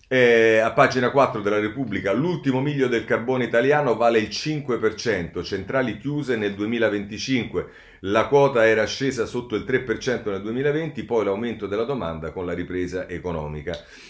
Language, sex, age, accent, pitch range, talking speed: Italian, male, 40-59, native, 85-115 Hz, 150 wpm